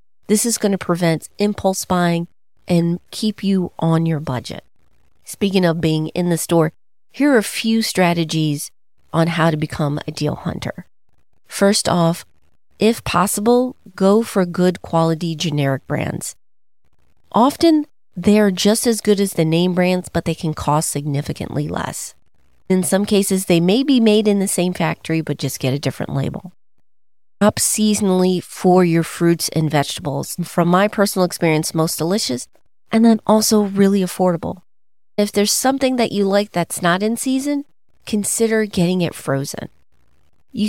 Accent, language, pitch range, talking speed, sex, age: American, English, 160-205 Hz, 155 wpm, female, 40-59